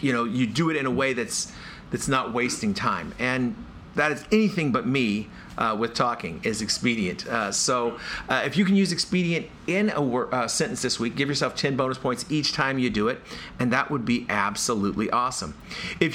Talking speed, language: 210 wpm, English